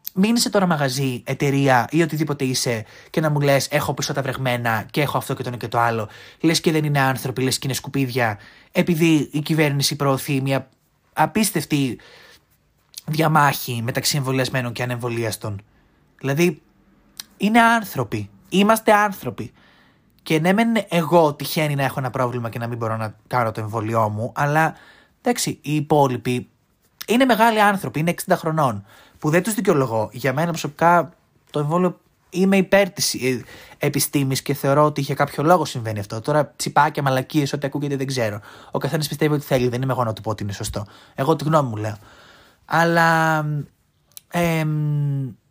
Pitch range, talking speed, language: 125-165 Hz, 165 wpm, Greek